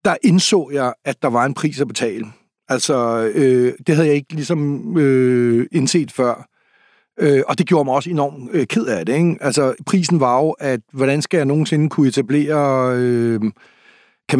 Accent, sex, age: native, male, 60-79